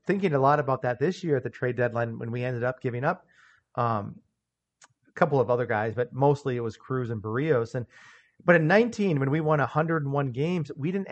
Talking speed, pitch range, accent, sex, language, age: 220 wpm, 125-165 Hz, American, male, English, 40-59